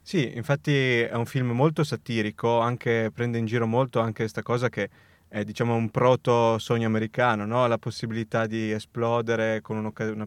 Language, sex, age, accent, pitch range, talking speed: Italian, male, 20-39, native, 110-120 Hz, 170 wpm